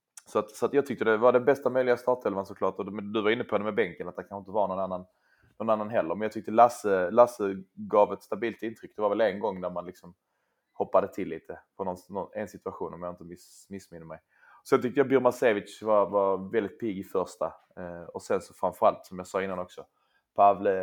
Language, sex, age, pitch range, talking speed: Swedish, male, 20-39, 95-120 Hz, 240 wpm